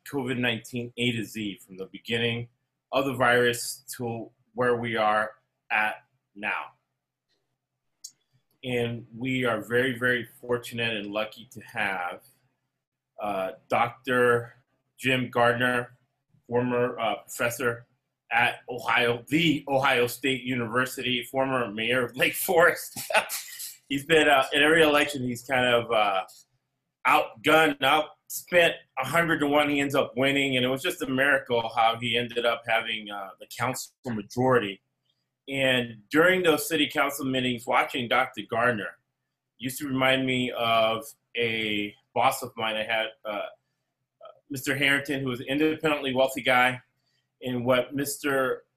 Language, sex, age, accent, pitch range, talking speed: English, male, 30-49, American, 120-140 Hz, 135 wpm